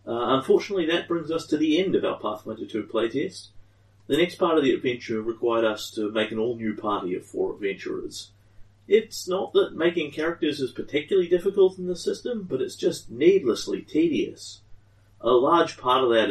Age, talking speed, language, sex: 30-49, 185 wpm, English, male